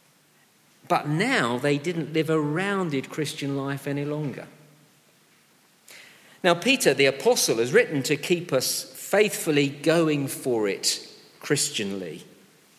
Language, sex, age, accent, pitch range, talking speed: English, male, 50-69, British, 130-175 Hz, 115 wpm